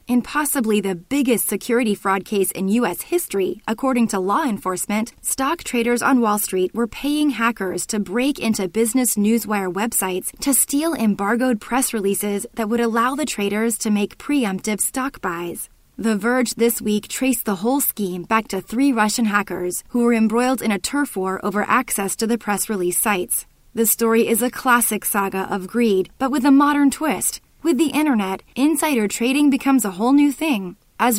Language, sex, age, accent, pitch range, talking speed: English, female, 20-39, American, 205-265 Hz, 180 wpm